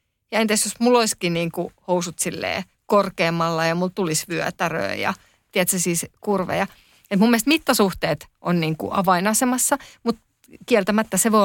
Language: Finnish